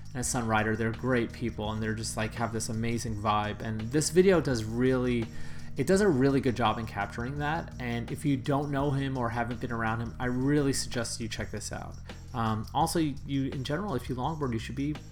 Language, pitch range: English, 110-135 Hz